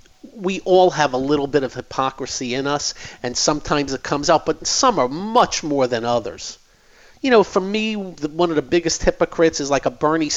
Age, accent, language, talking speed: 40-59, American, English, 205 wpm